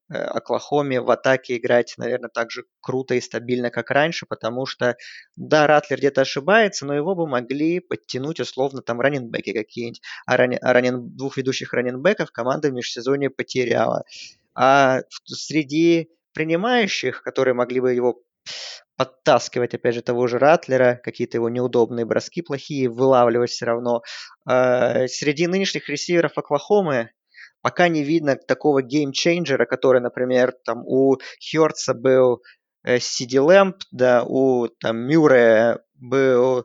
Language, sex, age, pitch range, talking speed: Russian, male, 20-39, 125-145 Hz, 130 wpm